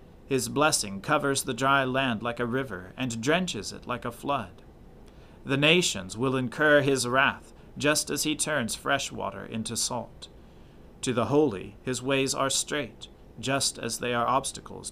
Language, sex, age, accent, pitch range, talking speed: English, male, 40-59, American, 115-140 Hz, 165 wpm